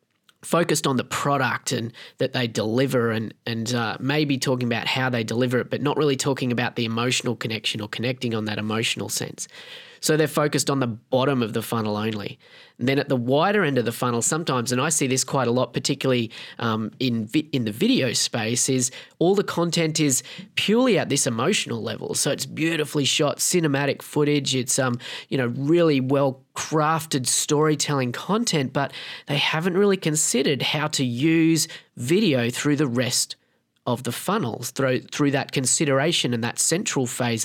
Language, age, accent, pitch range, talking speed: English, 20-39, Australian, 120-150 Hz, 185 wpm